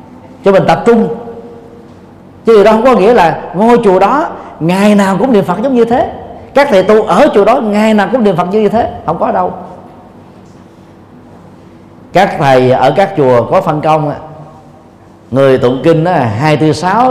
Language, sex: Vietnamese, male